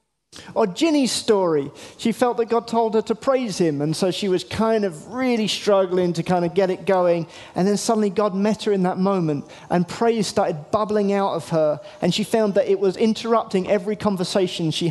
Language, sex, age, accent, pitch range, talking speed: English, male, 40-59, British, 170-215 Hz, 210 wpm